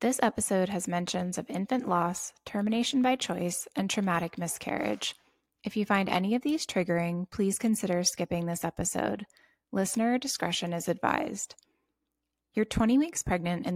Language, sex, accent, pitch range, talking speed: English, female, American, 175-220 Hz, 150 wpm